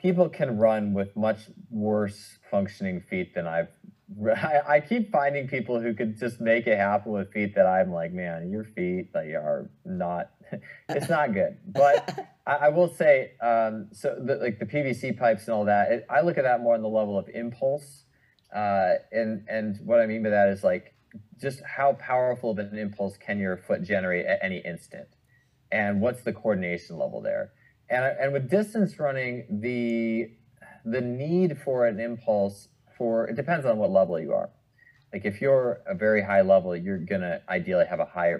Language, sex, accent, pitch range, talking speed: English, male, American, 100-140 Hz, 190 wpm